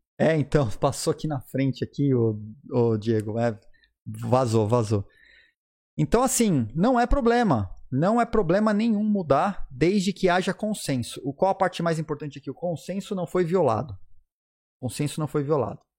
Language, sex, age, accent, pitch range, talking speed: Portuguese, male, 30-49, Brazilian, 125-175 Hz, 165 wpm